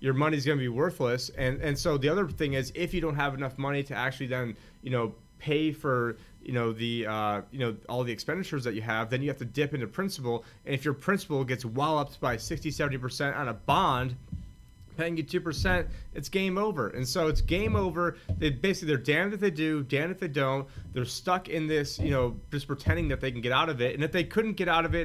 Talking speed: 245 wpm